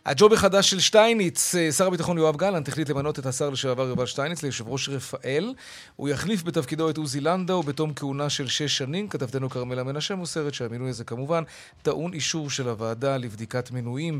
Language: Hebrew